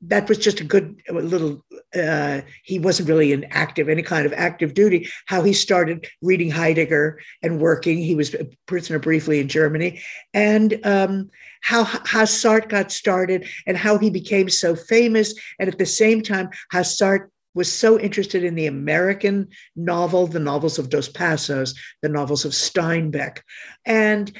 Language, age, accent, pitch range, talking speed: English, 50-69, American, 165-215 Hz, 165 wpm